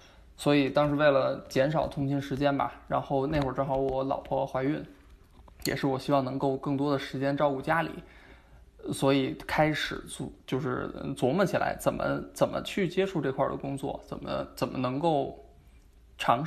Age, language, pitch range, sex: 20-39, Chinese, 135-155 Hz, male